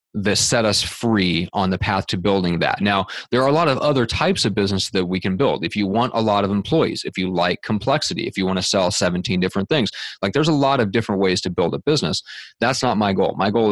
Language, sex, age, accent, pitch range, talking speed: English, male, 30-49, American, 95-115 Hz, 260 wpm